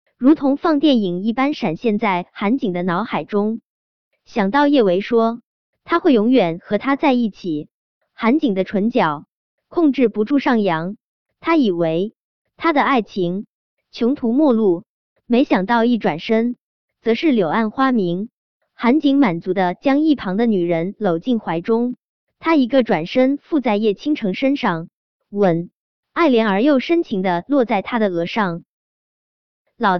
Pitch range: 190-275 Hz